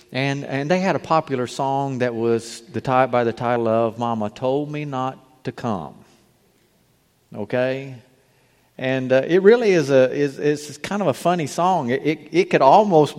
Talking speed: 180 wpm